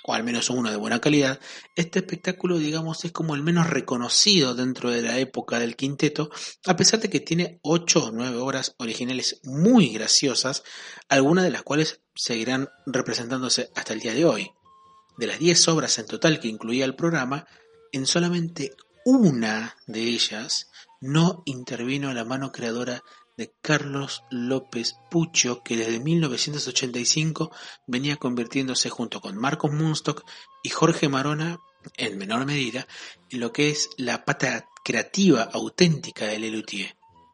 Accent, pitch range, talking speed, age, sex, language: Argentinian, 120-160 Hz, 150 wpm, 30-49, male, Spanish